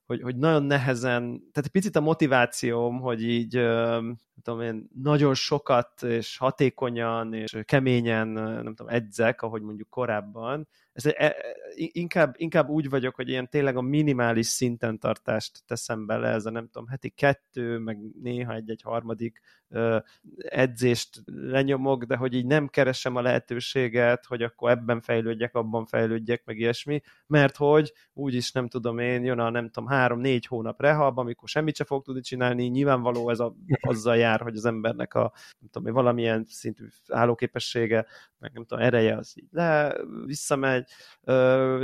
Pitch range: 115-135 Hz